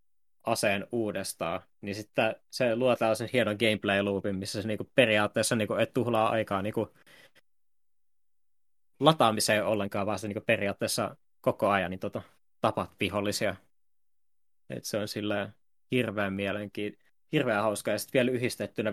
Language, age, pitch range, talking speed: Finnish, 20-39, 100-120 Hz, 135 wpm